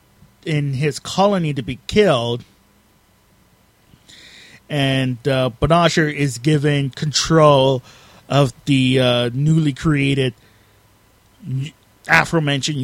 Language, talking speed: English, 90 wpm